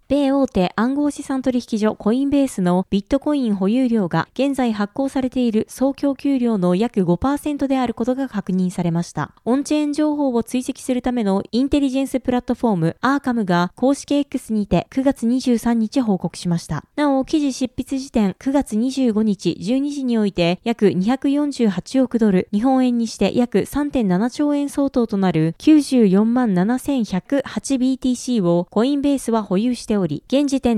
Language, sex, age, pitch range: Japanese, female, 20-39, 200-270 Hz